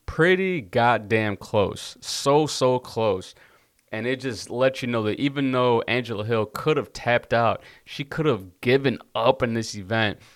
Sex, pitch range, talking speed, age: male, 110-135 Hz, 170 wpm, 30-49